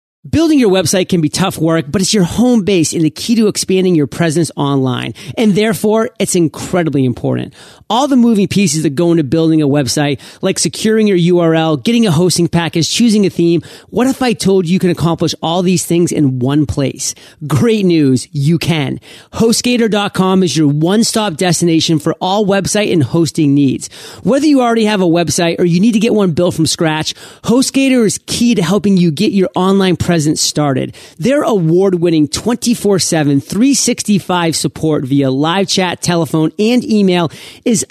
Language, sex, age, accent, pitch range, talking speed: English, male, 40-59, American, 160-210 Hz, 180 wpm